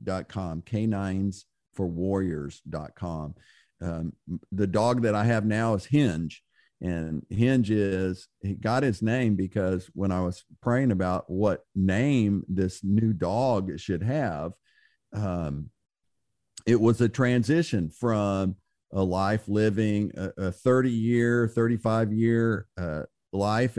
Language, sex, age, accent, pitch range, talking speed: English, male, 50-69, American, 90-115 Hz, 135 wpm